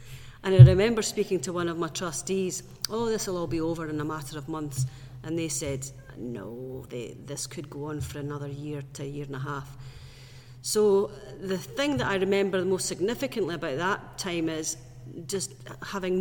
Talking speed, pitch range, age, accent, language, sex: 195 wpm, 130-175 Hz, 40-59, British, English, female